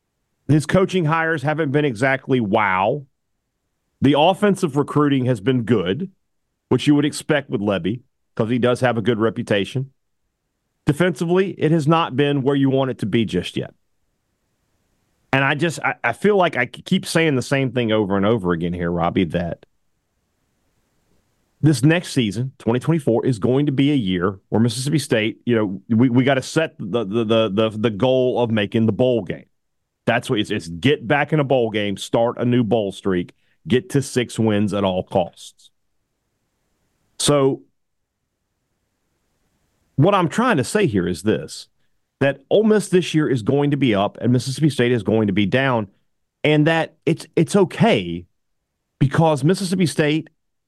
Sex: male